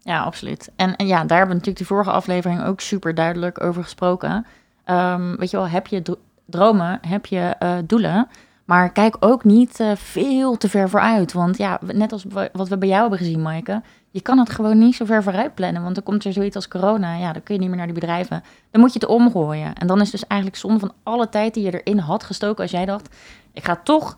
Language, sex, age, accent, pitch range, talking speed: Dutch, female, 20-39, Dutch, 185-225 Hz, 245 wpm